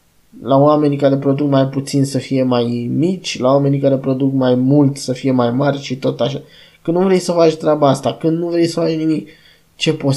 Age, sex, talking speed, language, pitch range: 20-39, male, 225 wpm, Romanian, 140-165 Hz